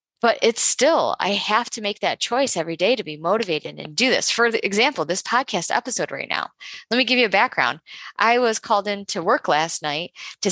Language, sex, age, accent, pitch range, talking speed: English, female, 20-39, American, 190-290 Hz, 220 wpm